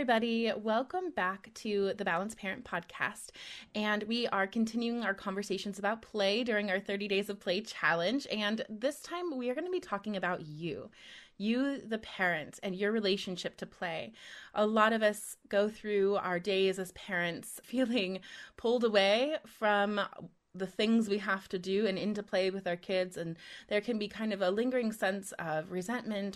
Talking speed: 180 wpm